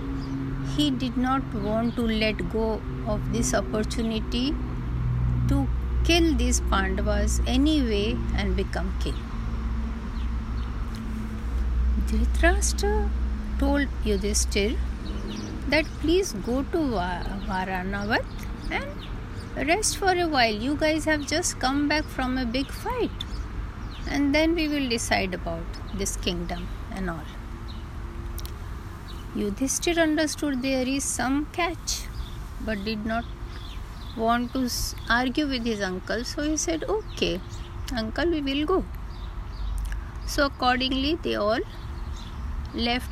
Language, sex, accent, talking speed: Hindi, female, native, 110 wpm